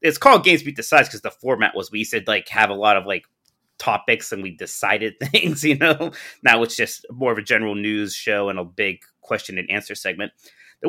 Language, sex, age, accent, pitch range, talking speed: English, male, 30-49, American, 105-175 Hz, 225 wpm